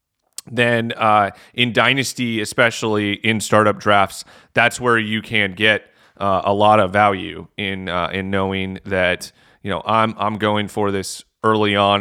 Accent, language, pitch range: American, English, 95-110 Hz